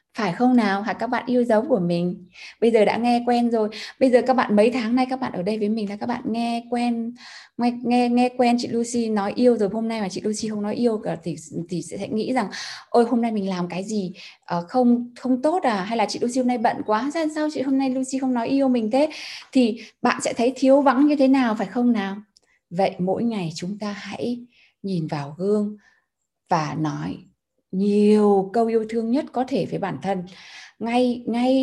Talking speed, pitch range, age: 230 wpm, 210-270 Hz, 20-39